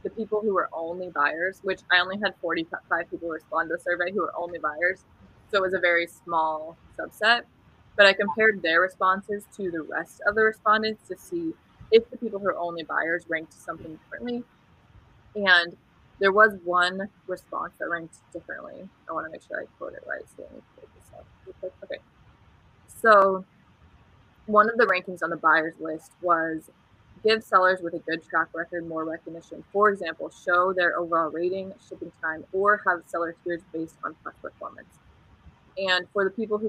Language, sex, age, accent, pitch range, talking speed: English, female, 20-39, American, 165-190 Hz, 180 wpm